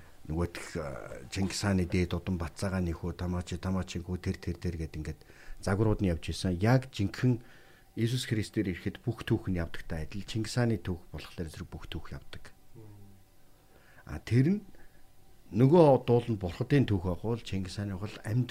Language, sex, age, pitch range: Korean, male, 60-79, 90-115 Hz